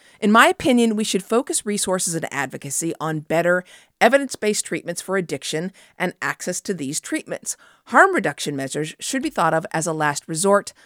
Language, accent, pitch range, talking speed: English, American, 150-210 Hz, 170 wpm